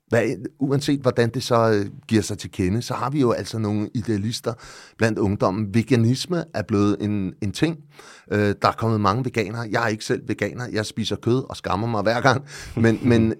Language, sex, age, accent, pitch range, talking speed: Danish, male, 30-49, native, 100-130 Hz, 195 wpm